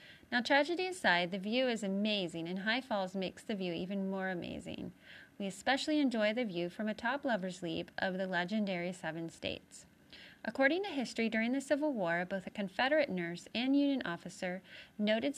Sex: female